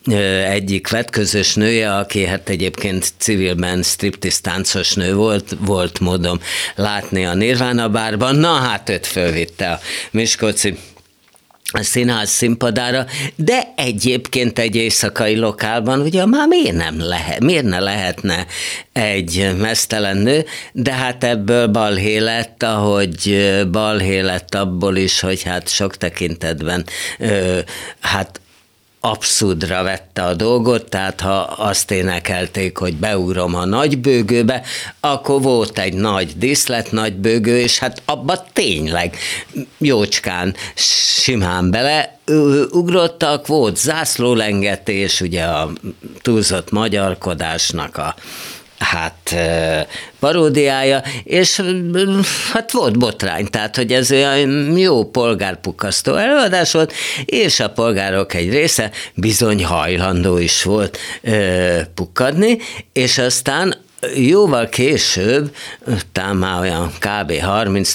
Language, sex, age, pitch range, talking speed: Hungarian, male, 50-69, 95-125 Hz, 105 wpm